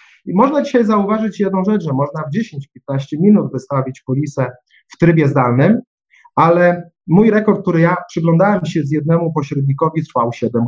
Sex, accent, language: male, native, Polish